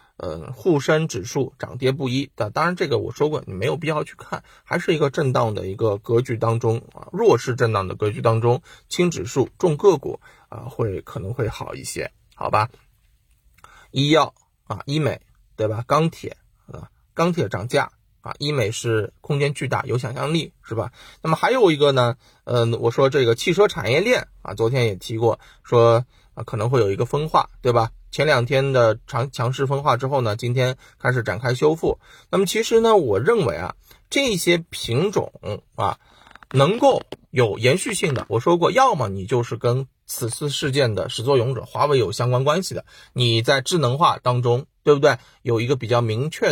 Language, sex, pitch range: Chinese, male, 115-150 Hz